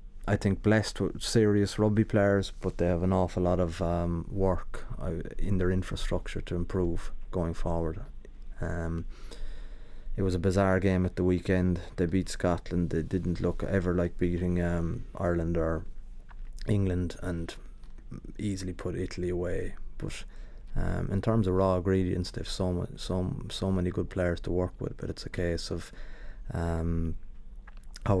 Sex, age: male, 20-39